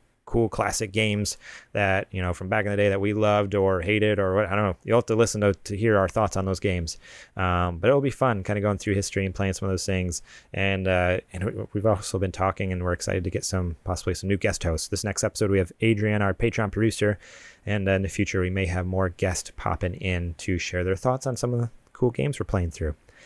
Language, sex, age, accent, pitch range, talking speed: English, male, 30-49, American, 95-110 Hz, 260 wpm